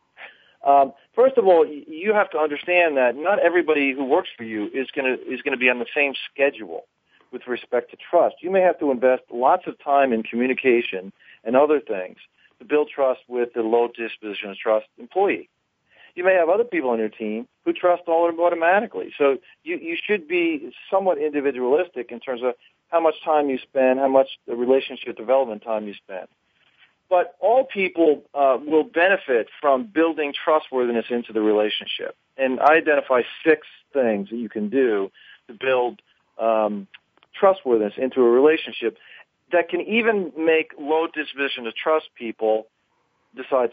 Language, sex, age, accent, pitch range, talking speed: English, male, 40-59, American, 120-175 Hz, 175 wpm